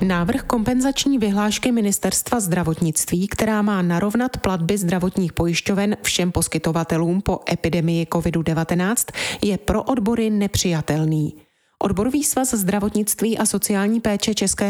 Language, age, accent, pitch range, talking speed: Czech, 30-49, native, 170-215 Hz, 110 wpm